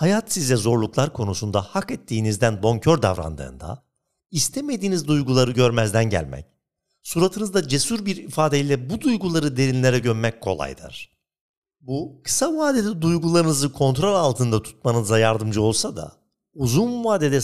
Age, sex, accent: 50-69, male, native